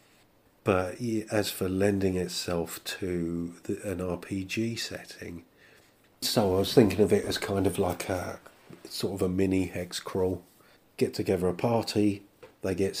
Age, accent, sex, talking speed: 40-59, British, male, 150 wpm